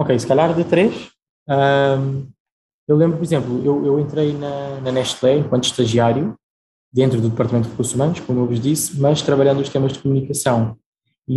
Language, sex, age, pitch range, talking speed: Portuguese, male, 20-39, 125-145 Hz, 185 wpm